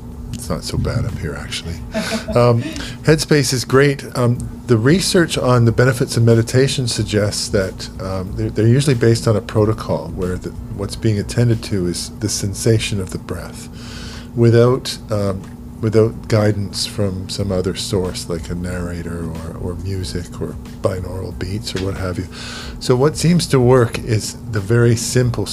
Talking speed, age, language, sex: 165 wpm, 40-59, English, male